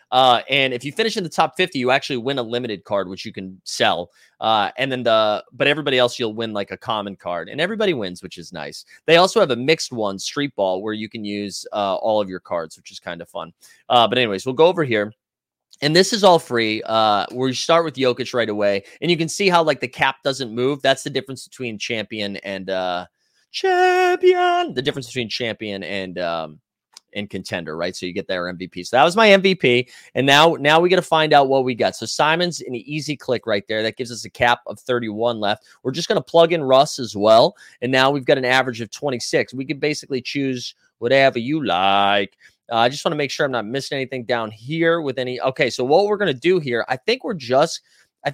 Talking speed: 245 wpm